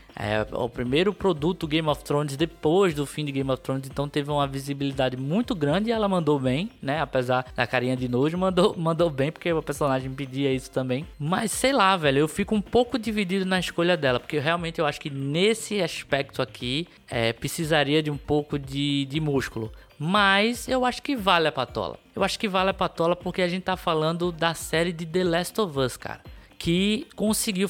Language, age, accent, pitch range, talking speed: Portuguese, 20-39, Brazilian, 135-195 Hz, 205 wpm